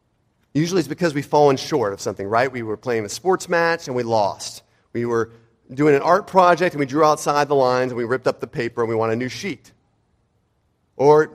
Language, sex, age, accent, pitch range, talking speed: English, male, 40-59, American, 120-175 Hz, 225 wpm